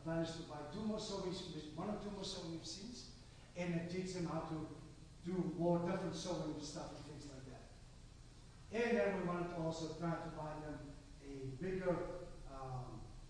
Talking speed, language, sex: 190 wpm, English, male